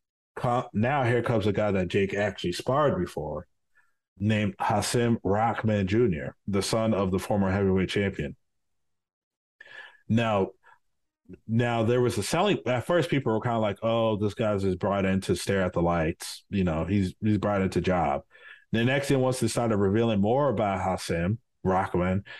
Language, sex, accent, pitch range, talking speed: English, male, American, 100-120 Hz, 170 wpm